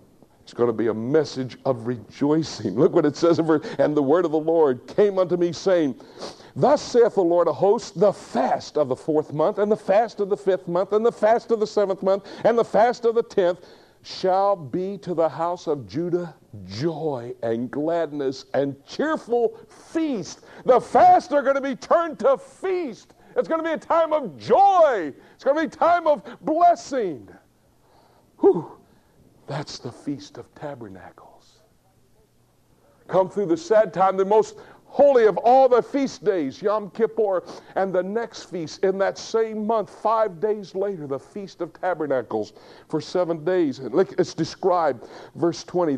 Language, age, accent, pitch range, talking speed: English, 60-79, American, 170-240 Hz, 180 wpm